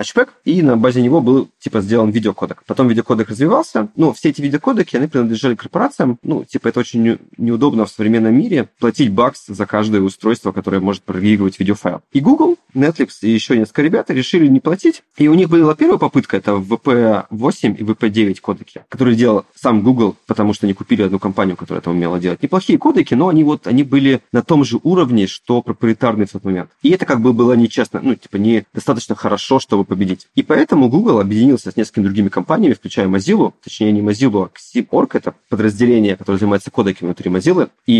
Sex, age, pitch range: male, 20-39, 100-125 Hz